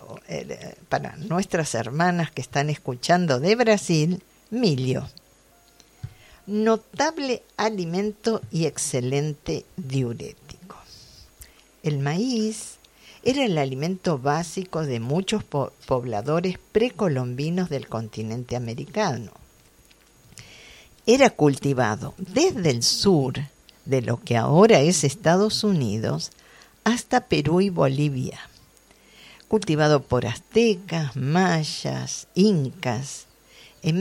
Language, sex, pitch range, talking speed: Spanish, female, 135-205 Hz, 85 wpm